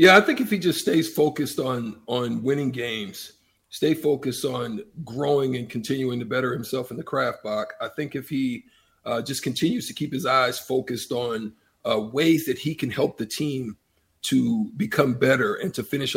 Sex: male